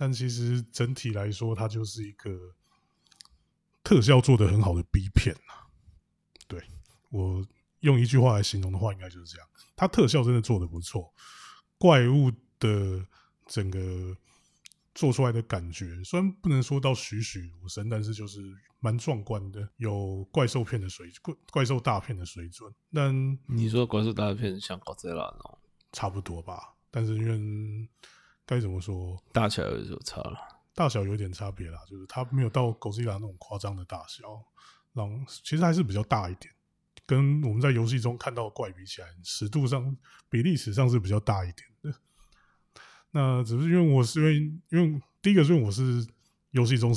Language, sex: Chinese, male